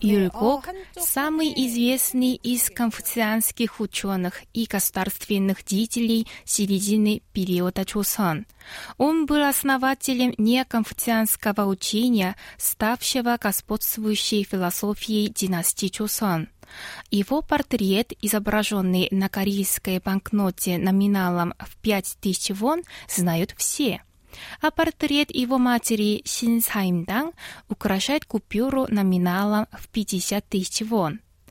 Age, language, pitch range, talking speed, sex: 20-39, Russian, 195-260 Hz, 90 wpm, female